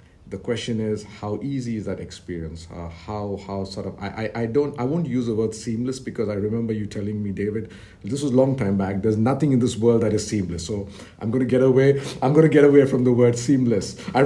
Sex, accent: male, Indian